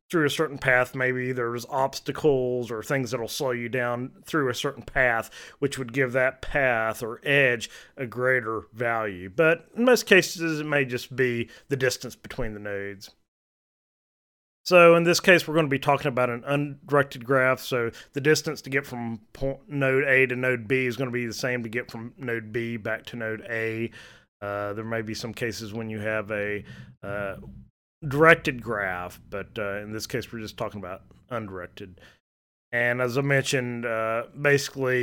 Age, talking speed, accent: 30-49, 185 wpm, American